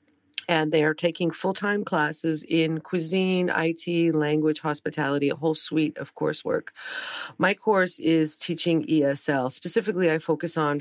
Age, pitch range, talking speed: 40-59, 150-180 Hz, 140 wpm